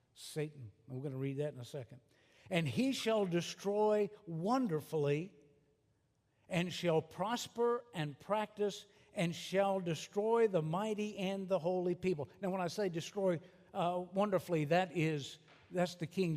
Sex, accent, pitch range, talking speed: male, American, 140-170 Hz, 145 wpm